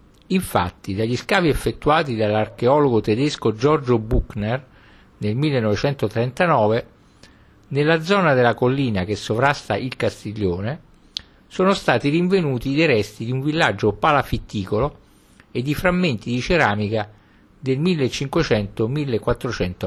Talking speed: 105 wpm